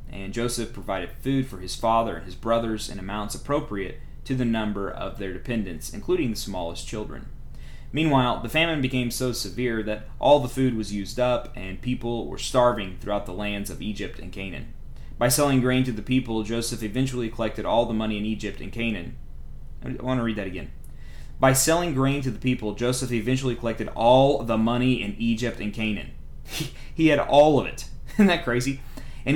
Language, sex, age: English, male, 30-49